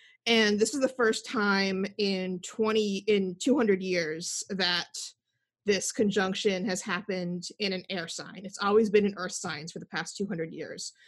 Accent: American